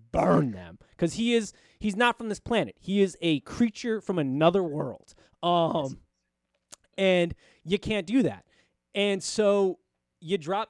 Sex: male